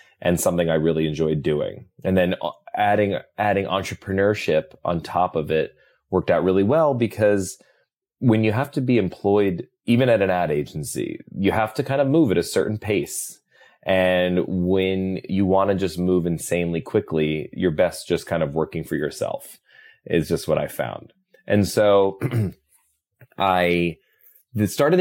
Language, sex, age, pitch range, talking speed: English, male, 30-49, 85-105 Hz, 160 wpm